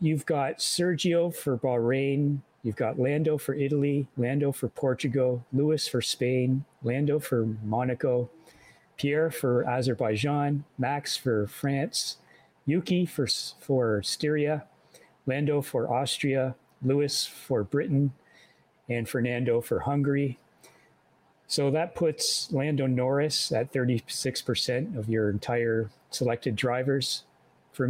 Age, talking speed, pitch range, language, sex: 40-59, 110 wpm, 120-140 Hz, English, male